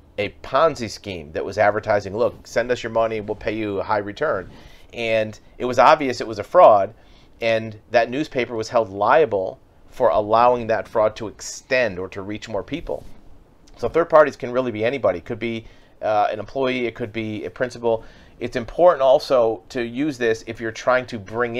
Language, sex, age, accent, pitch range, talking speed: English, male, 40-59, American, 105-120 Hz, 195 wpm